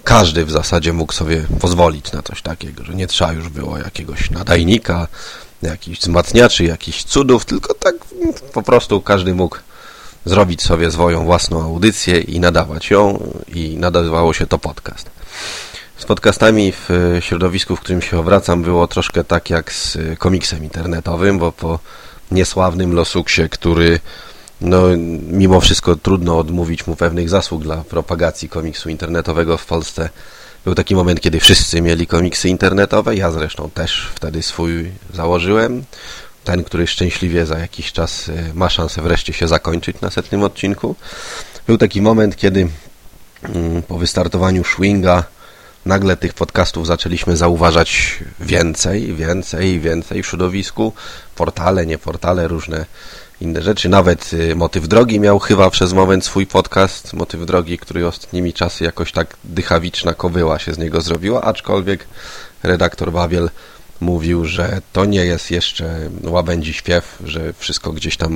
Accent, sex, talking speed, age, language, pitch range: native, male, 140 wpm, 30-49, Polish, 85-95 Hz